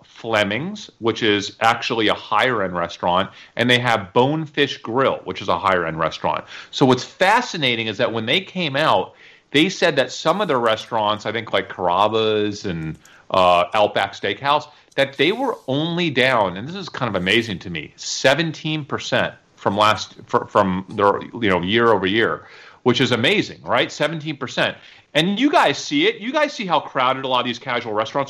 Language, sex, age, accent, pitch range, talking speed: English, male, 40-59, American, 110-155 Hz, 190 wpm